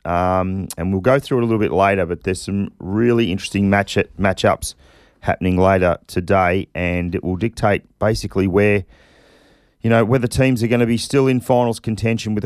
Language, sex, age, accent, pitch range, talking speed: English, male, 40-59, Australian, 95-115 Hz, 190 wpm